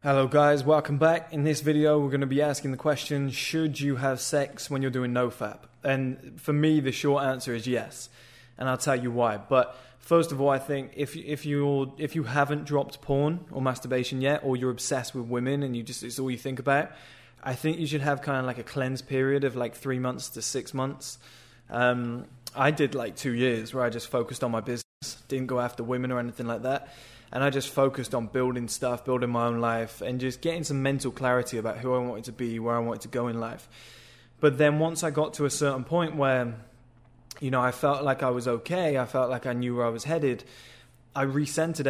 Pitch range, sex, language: 120-140 Hz, male, English